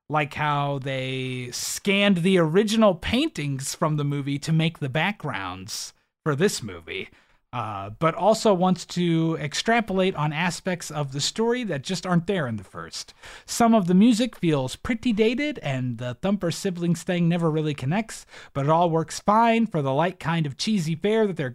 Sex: male